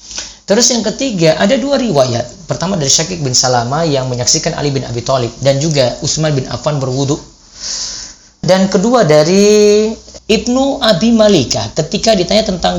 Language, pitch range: Indonesian, 135-205 Hz